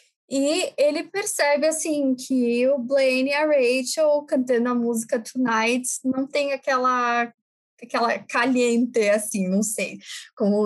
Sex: female